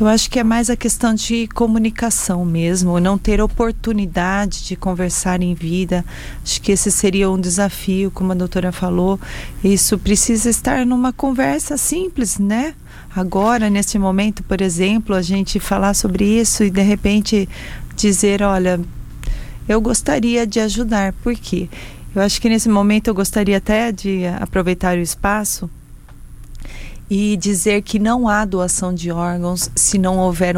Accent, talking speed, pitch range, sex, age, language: Brazilian, 155 wpm, 190-230 Hz, female, 30-49, Portuguese